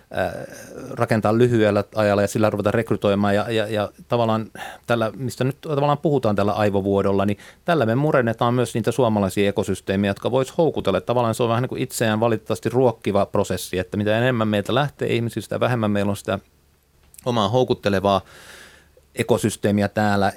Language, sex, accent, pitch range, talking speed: Finnish, male, native, 100-120 Hz, 155 wpm